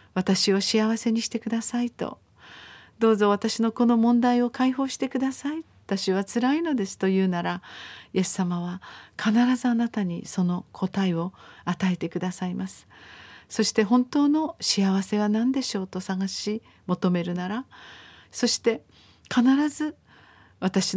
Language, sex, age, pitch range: Japanese, female, 50-69, 185-240 Hz